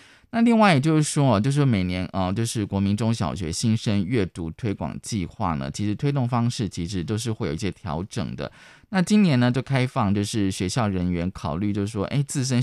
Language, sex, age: Chinese, male, 20-39